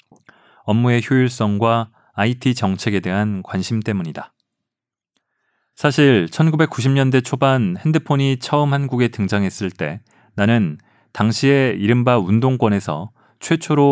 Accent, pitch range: native, 105-135 Hz